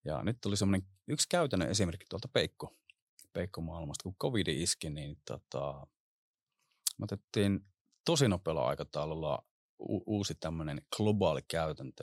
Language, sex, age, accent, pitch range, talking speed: Finnish, male, 30-49, native, 80-105 Hz, 110 wpm